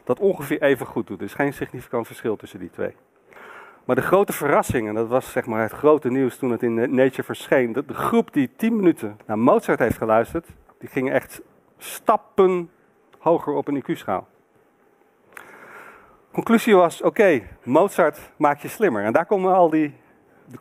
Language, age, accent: Dutch, 50-69, Dutch